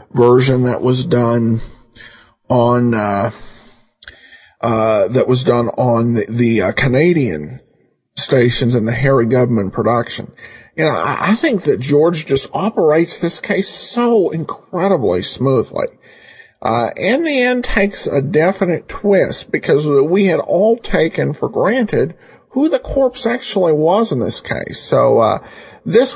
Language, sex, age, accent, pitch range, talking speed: English, male, 50-69, American, 125-190 Hz, 140 wpm